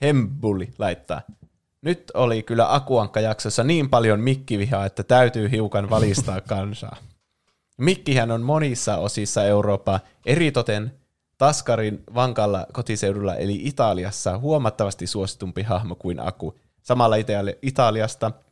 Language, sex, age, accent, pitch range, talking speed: Finnish, male, 20-39, native, 100-125 Hz, 105 wpm